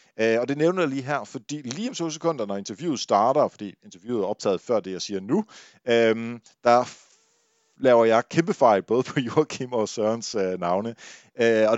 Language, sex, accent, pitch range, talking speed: Danish, male, native, 95-125 Hz, 205 wpm